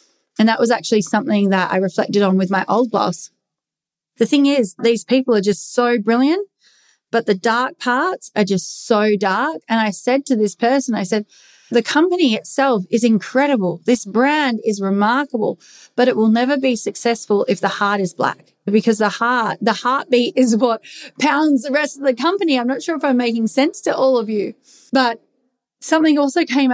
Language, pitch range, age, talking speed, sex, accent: English, 225-275 Hz, 30-49, 195 wpm, female, Australian